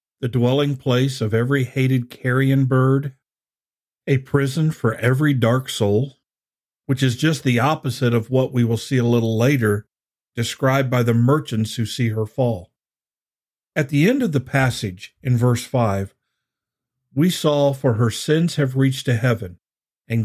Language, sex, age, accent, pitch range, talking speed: English, male, 50-69, American, 115-140 Hz, 160 wpm